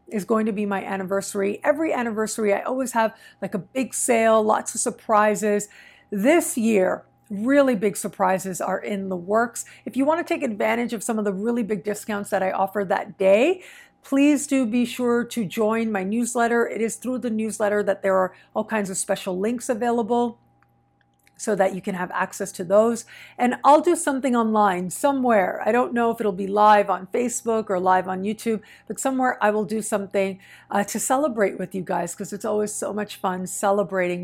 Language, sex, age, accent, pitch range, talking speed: English, female, 50-69, American, 205-255 Hz, 200 wpm